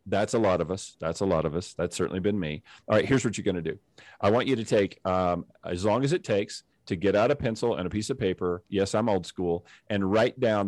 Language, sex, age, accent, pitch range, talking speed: English, male, 40-59, American, 95-115 Hz, 280 wpm